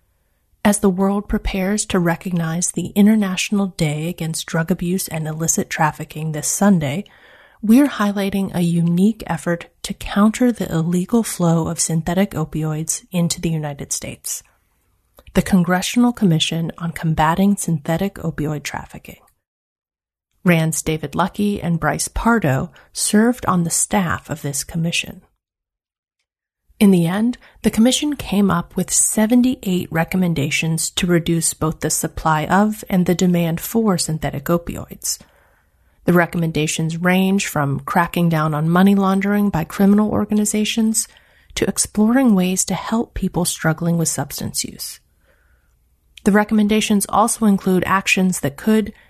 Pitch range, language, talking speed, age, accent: 160-205 Hz, English, 130 wpm, 30-49, American